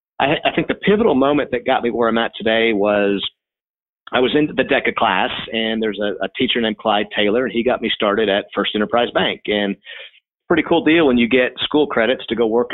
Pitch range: 105-130 Hz